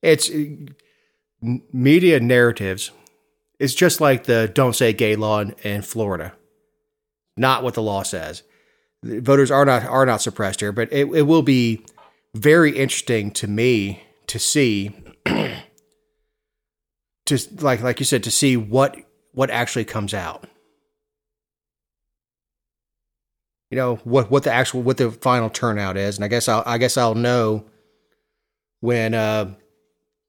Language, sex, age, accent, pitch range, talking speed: English, male, 30-49, American, 110-140 Hz, 140 wpm